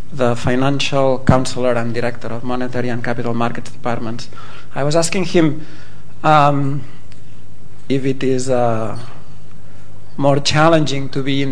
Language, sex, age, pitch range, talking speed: English, male, 40-59, 120-140 Hz, 130 wpm